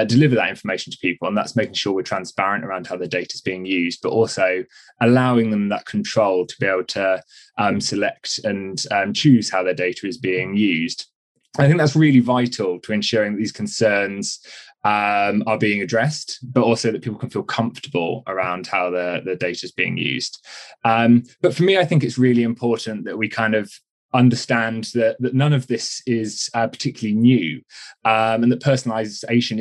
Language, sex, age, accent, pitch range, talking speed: German, male, 20-39, British, 100-120 Hz, 190 wpm